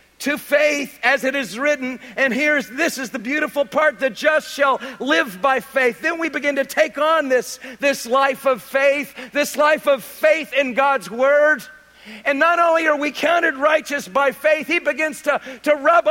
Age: 50-69